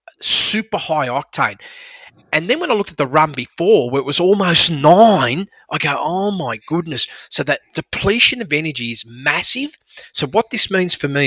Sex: male